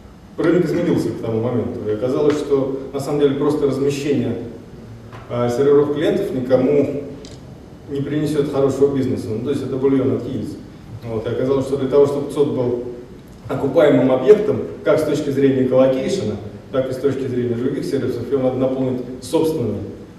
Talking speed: 160 wpm